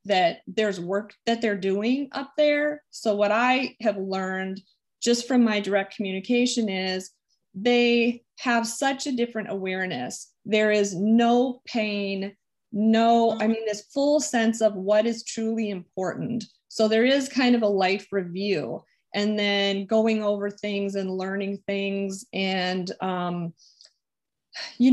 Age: 20-39